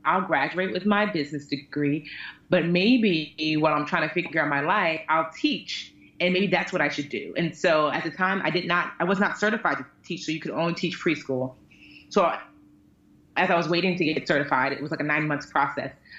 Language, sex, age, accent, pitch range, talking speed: English, female, 30-49, American, 145-180 Hz, 220 wpm